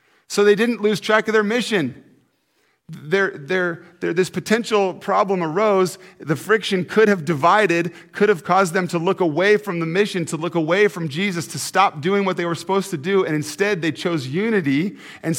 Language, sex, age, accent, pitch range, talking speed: English, male, 40-59, American, 150-190 Hz, 195 wpm